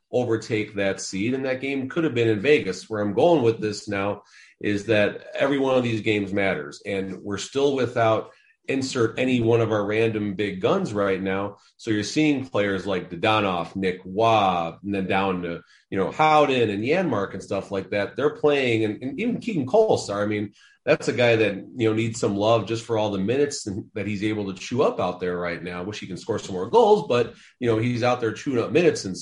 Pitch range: 105-135 Hz